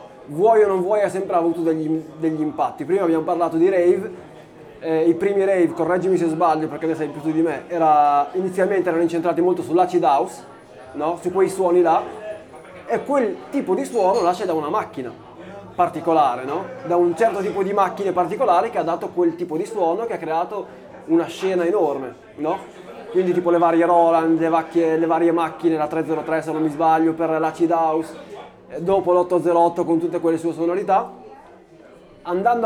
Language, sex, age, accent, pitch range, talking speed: Italian, male, 20-39, native, 160-190 Hz, 185 wpm